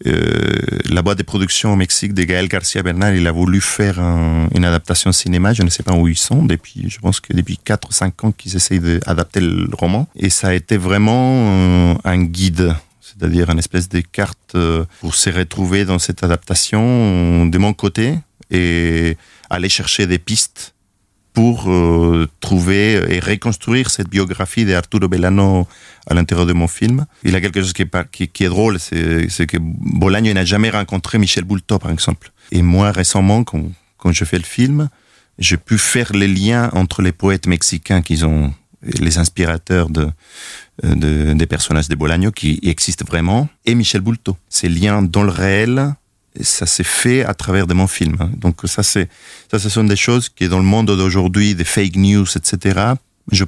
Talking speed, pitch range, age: 185 wpm, 85-105 Hz, 40-59